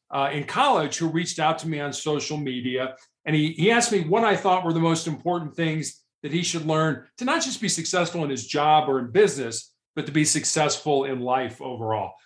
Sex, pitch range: male, 140-170 Hz